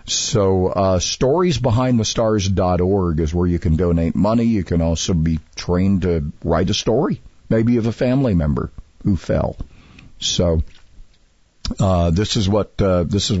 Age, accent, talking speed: 50-69, American, 155 wpm